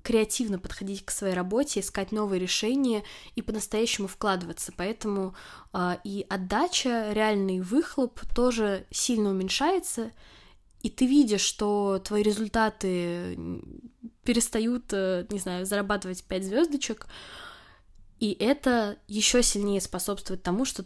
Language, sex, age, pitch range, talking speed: Russian, female, 20-39, 185-235 Hz, 115 wpm